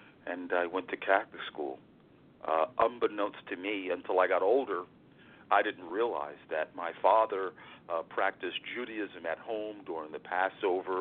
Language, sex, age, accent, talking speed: English, male, 40-59, American, 155 wpm